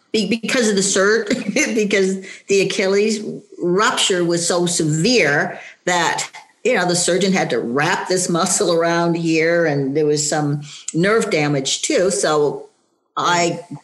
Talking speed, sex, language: 140 wpm, female, English